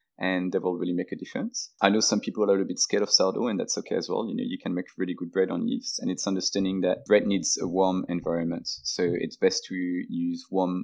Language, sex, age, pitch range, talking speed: English, male, 20-39, 90-115 Hz, 270 wpm